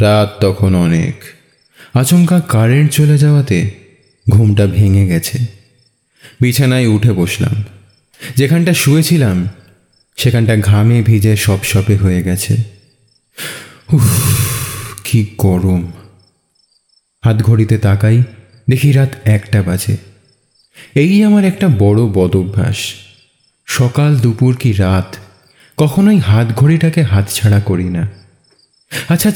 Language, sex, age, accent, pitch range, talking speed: Bengali, male, 30-49, native, 100-130 Hz, 80 wpm